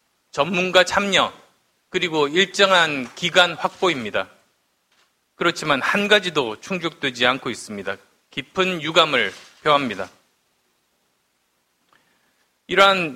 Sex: male